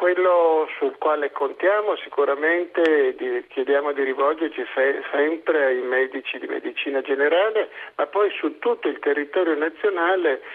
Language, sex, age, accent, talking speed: Italian, male, 50-69, native, 120 wpm